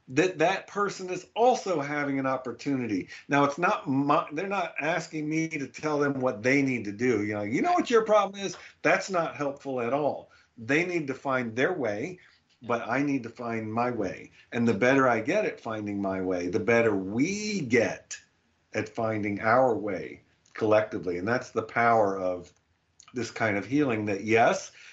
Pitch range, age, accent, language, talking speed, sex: 110-140 Hz, 50-69, American, English, 190 wpm, male